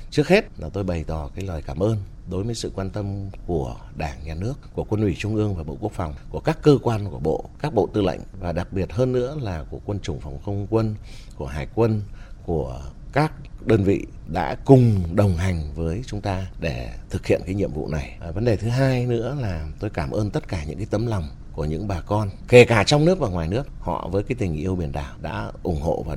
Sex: male